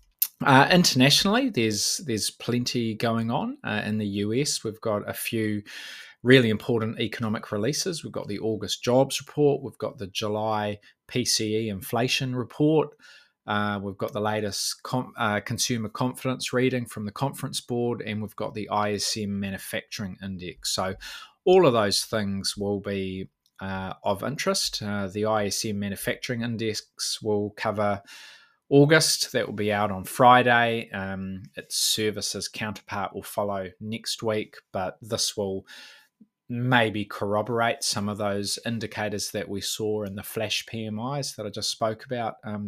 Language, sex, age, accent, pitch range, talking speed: English, male, 20-39, Australian, 105-120 Hz, 150 wpm